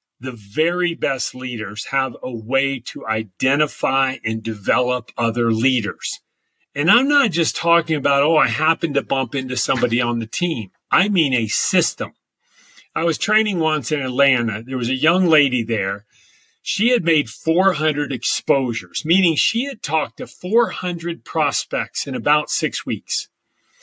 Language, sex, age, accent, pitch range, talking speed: English, male, 40-59, American, 130-180 Hz, 155 wpm